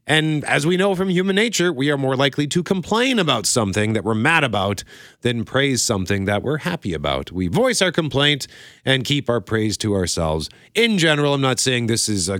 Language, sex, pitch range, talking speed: English, male, 95-160 Hz, 215 wpm